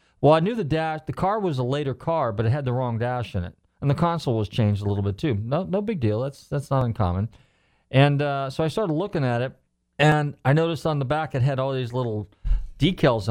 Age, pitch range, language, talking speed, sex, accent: 40-59, 105-135 Hz, English, 255 wpm, male, American